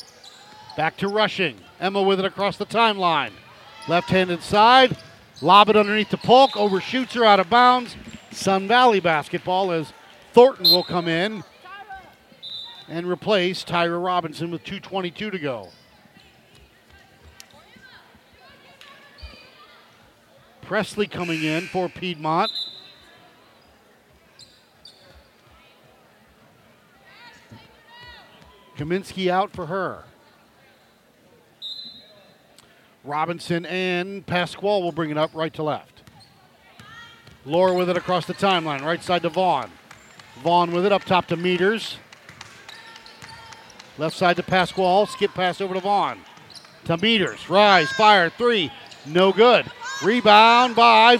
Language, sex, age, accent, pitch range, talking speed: English, male, 50-69, American, 175-215 Hz, 110 wpm